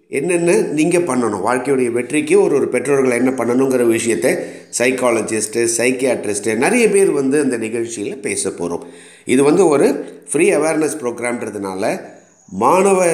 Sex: male